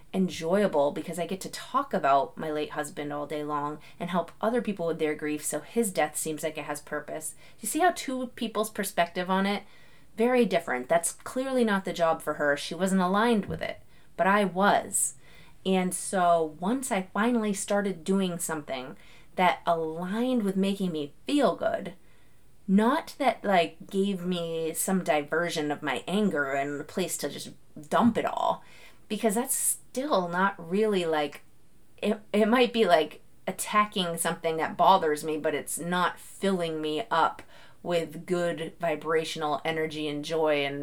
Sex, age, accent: female, 30-49, American